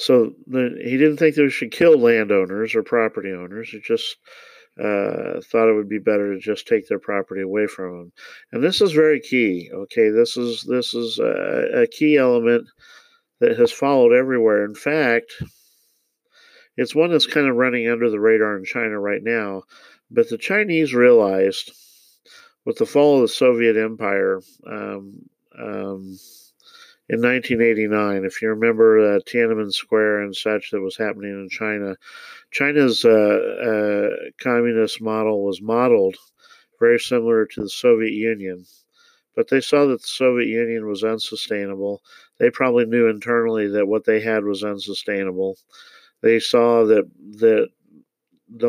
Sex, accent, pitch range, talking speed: male, American, 105-155 Hz, 155 wpm